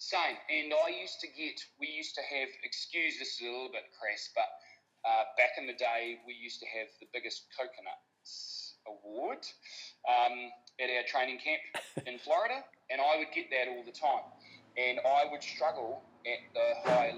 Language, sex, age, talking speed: English, male, 30-49, 185 wpm